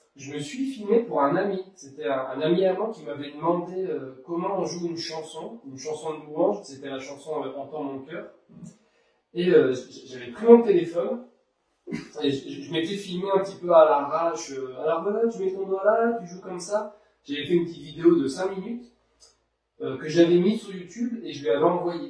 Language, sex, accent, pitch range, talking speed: French, male, French, 140-190 Hz, 215 wpm